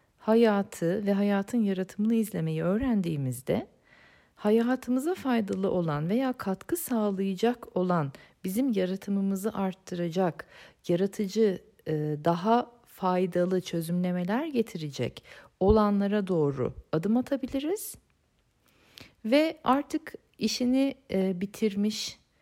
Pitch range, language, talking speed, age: 175-235 Hz, Turkish, 80 wpm, 50-69